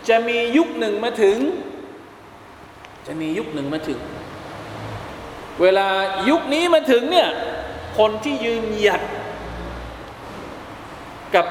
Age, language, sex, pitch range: 20-39, Thai, male, 160-215 Hz